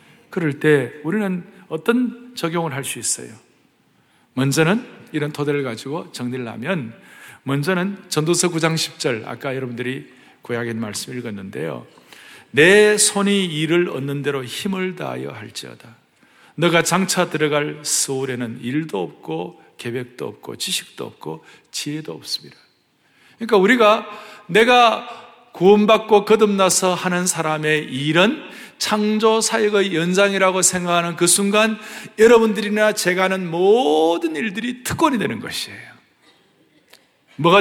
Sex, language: male, Korean